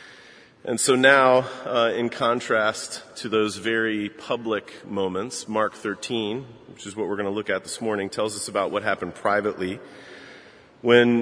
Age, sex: 30-49, male